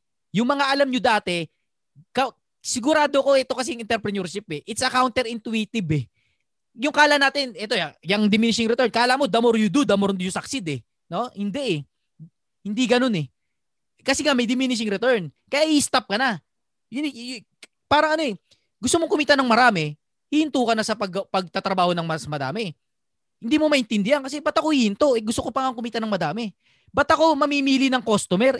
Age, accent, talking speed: 20-39, native, 180 wpm